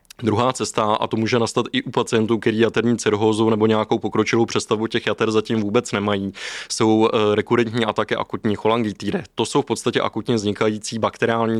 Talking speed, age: 170 wpm, 20-39